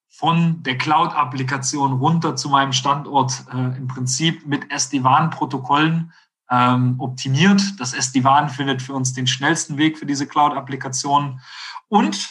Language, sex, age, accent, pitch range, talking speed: German, male, 40-59, German, 125-150 Hz, 120 wpm